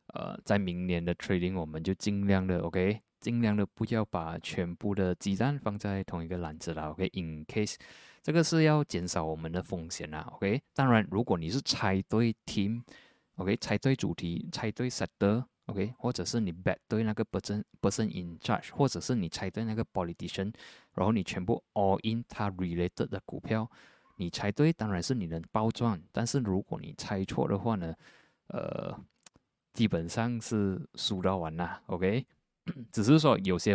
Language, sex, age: Chinese, male, 20-39